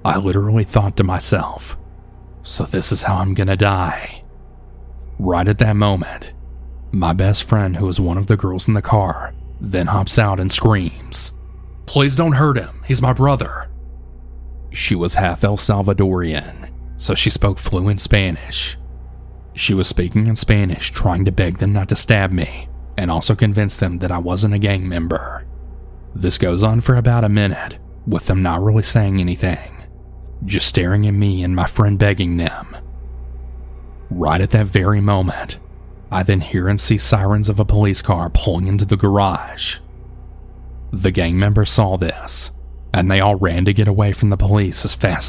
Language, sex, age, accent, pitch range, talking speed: English, male, 30-49, American, 80-105 Hz, 175 wpm